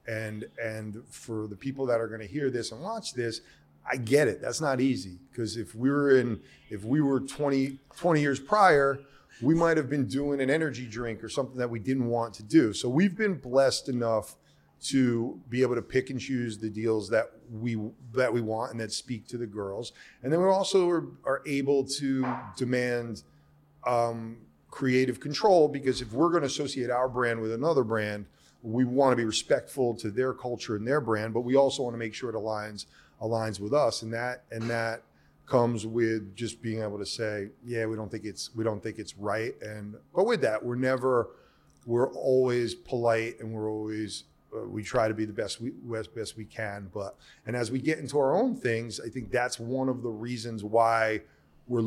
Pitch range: 110-130 Hz